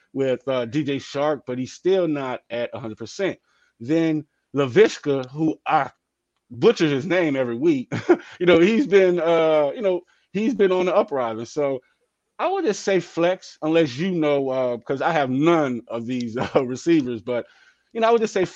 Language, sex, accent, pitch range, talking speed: English, male, American, 125-175 Hz, 180 wpm